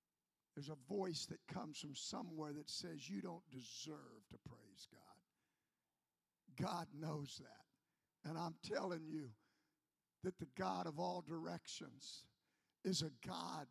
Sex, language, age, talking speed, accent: male, English, 50-69, 135 wpm, American